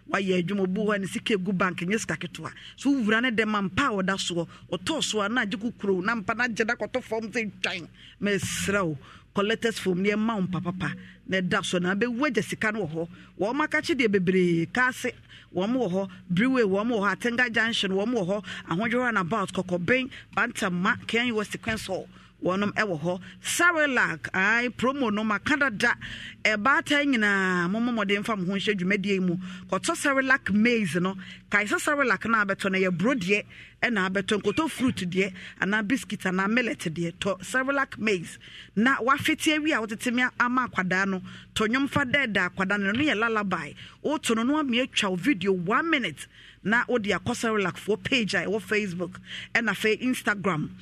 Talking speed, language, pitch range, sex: 180 wpm, English, 190-240 Hz, female